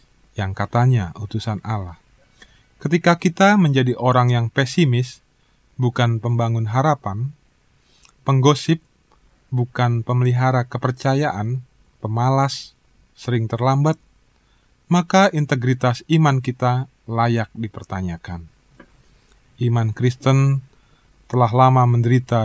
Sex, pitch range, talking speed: male, 110-135 Hz, 85 wpm